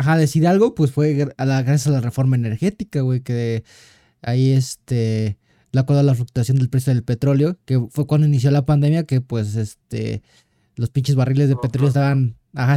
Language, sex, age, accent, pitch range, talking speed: Spanish, male, 20-39, Mexican, 125-150 Hz, 190 wpm